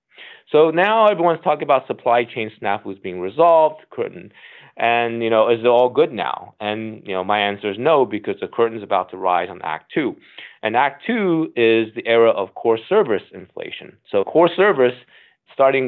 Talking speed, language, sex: 190 wpm, English, male